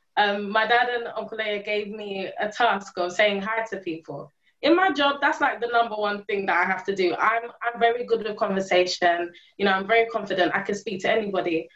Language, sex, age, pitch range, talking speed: English, female, 20-39, 200-255 Hz, 230 wpm